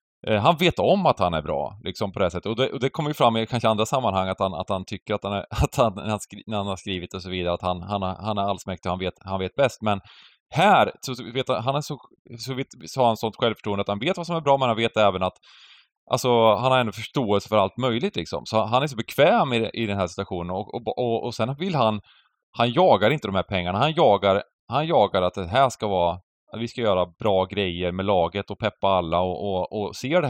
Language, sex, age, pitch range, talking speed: English, male, 20-39, 95-120 Hz, 270 wpm